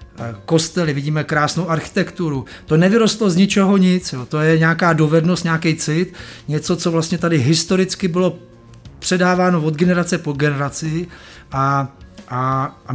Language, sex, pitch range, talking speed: Czech, male, 140-175 Hz, 140 wpm